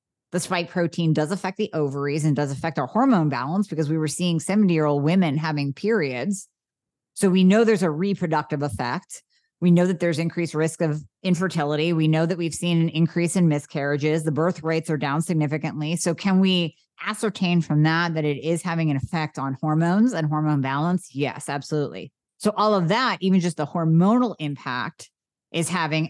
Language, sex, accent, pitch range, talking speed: English, female, American, 155-190 Hz, 185 wpm